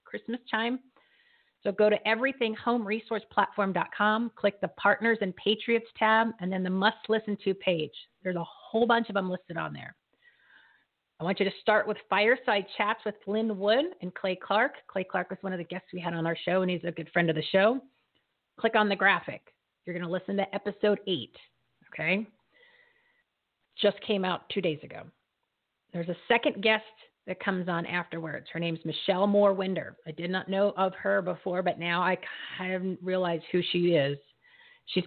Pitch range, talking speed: 175-215 Hz, 190 wpm